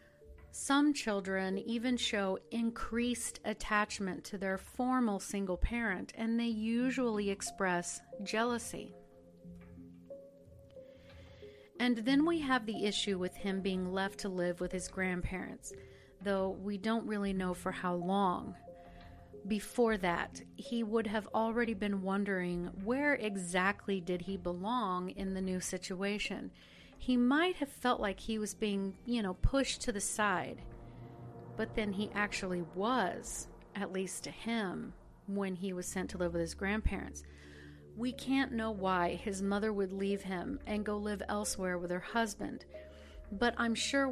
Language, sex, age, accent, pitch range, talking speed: English, female, 40-59, American, 185-230 Hz, 145 wpm